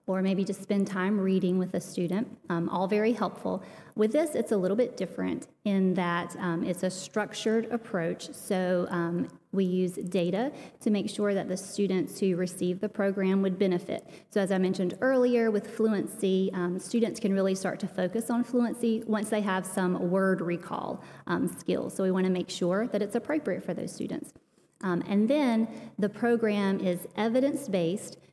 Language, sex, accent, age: English, female, American, 30-49